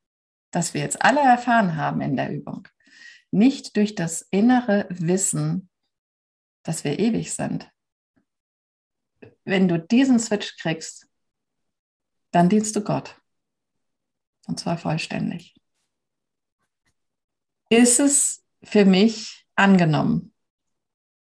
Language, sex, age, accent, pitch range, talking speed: German, female, 50-69, German, 175-230 Hz, 100 wpm